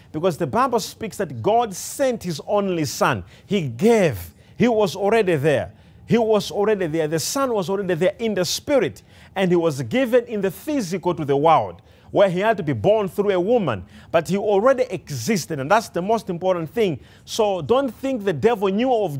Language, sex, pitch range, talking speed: English, male, 160-220 Hz, 200 wpm